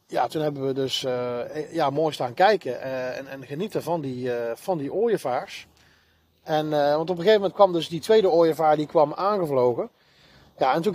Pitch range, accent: 135-165 Hz, Dutch